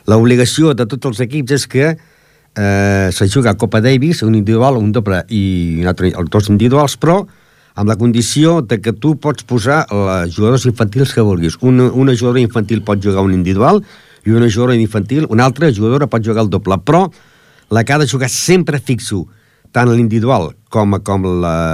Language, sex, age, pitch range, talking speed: Italian, male, 60-79, 100-130 Hz, 180 wpm